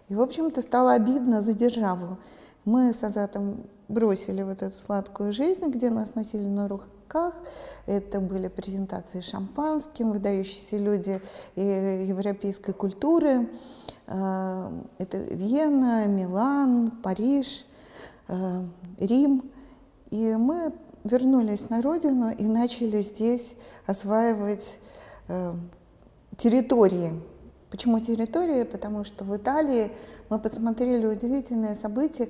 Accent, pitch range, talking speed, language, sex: native, 200-250 Hz, 100 wpm, Russian, female